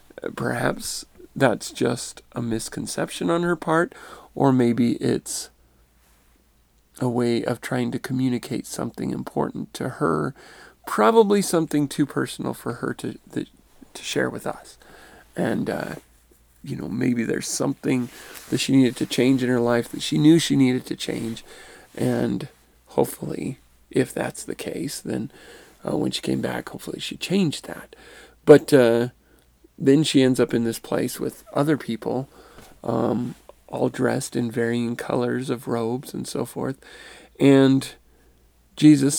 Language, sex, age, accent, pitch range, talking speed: English, male, 40-59, American, 115-140 Hz, 145 wpm